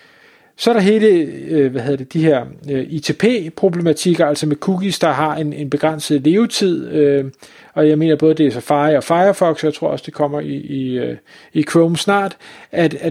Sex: male